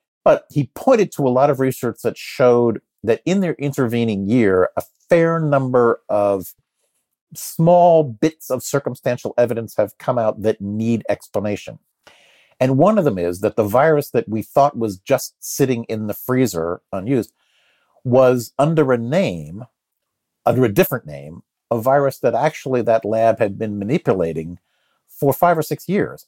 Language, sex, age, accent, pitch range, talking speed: English, male, 50-69, American, 105-145 Hz, 160 wpm